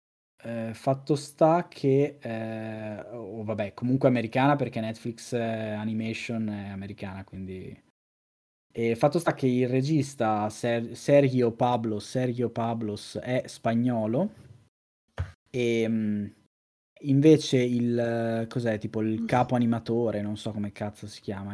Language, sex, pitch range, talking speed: Italian, male, 105-130 Hz, 125 wpm